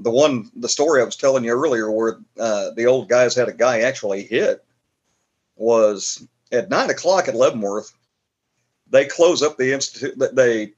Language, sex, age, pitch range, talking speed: English, male, 50-69, 115-135 Hz, 180 wpm